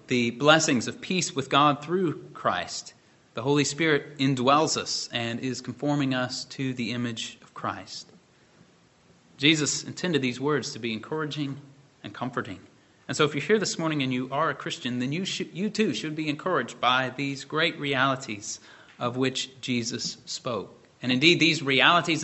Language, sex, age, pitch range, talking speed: English, male, 30-49, 130-155 Hz, 170 wpm